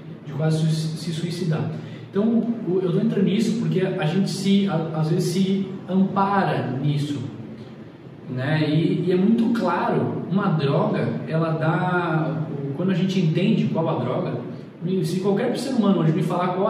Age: 20-39